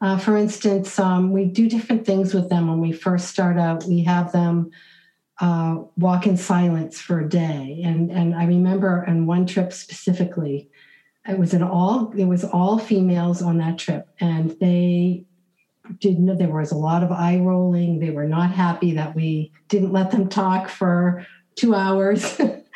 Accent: American